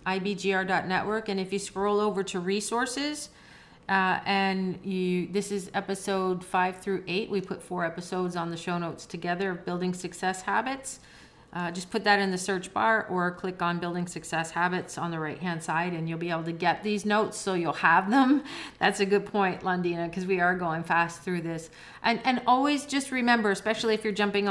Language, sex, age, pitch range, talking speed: English, female, 40-59, 170-205 Hz, 200 wpm